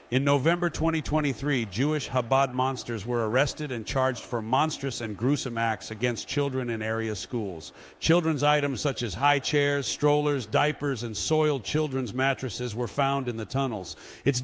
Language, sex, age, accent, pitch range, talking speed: English, male, 50-69, American, 115-140 Hz, 160 wpm